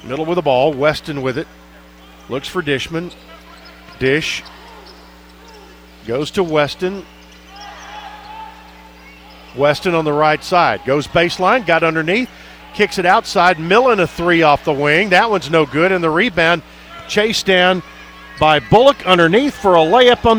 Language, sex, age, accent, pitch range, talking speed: English, male, 50-69, American, 135-190 Hz, 140 wpm